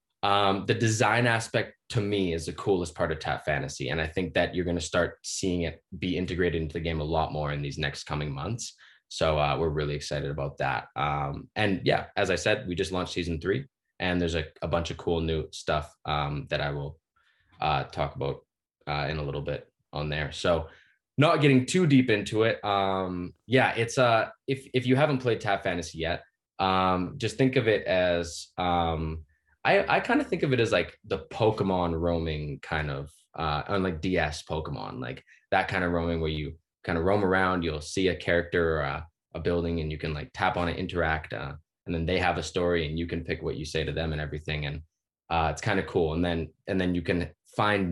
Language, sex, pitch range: English, male, 80-95 Hz